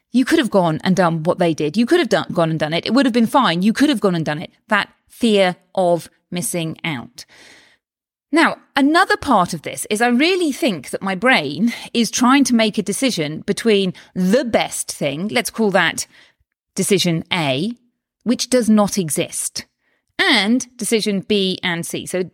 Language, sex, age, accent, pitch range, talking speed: English, female, 30-49, British, 180-255 Hz, 190 wpm